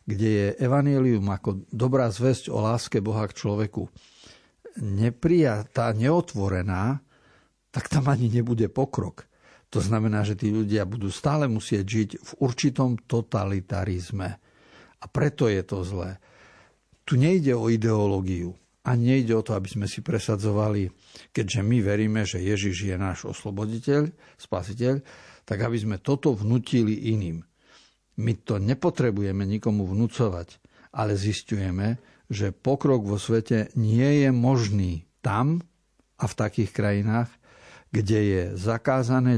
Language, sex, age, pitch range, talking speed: Slovak, male, 50-69, 100-120 Hz, 130 wpm